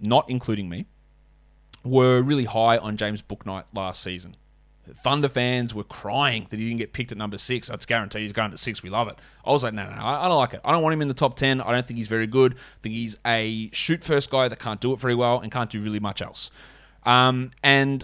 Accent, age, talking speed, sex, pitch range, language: Australian, 20-39, 255 wpm, male, 110-140 Hz, English